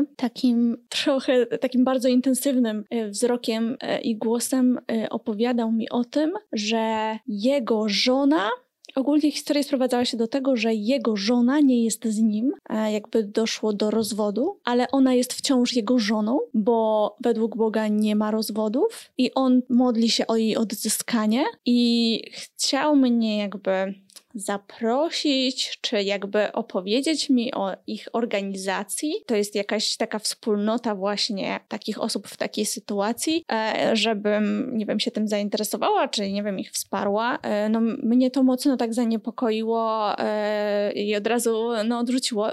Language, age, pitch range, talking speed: Polish, 20-39, 220-265 Hz, 135 wpm